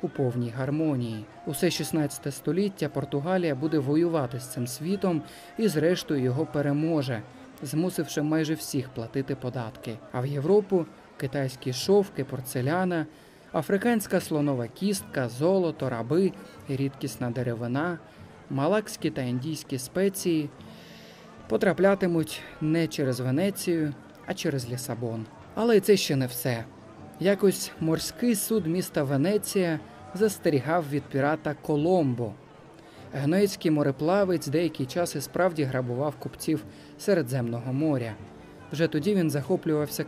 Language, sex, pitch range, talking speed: Ukrainian, male, 135-180 Hz, 110 wpm